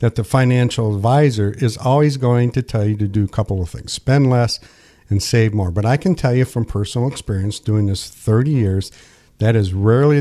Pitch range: 110-140 Hz